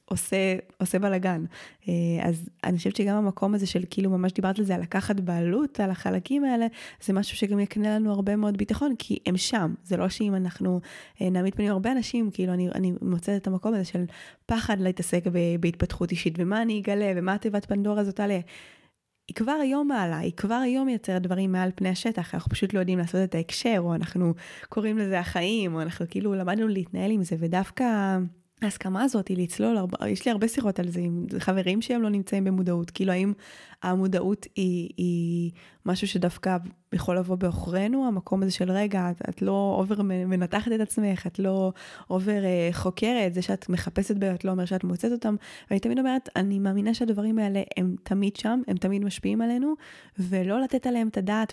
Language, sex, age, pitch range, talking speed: Hebrew, female, 20-39, 185-210 Hz, 185 wpm